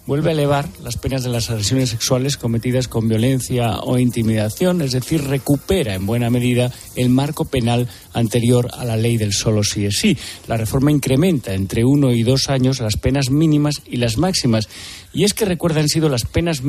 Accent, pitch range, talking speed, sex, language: Spanish, 115-140 Hz, 200 wpm, male, Spanish